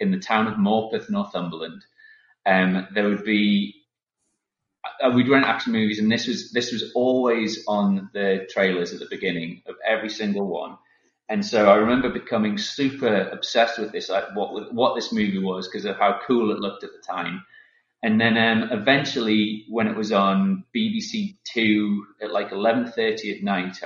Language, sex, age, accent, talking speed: English, male, 30-49, British, 175 wpm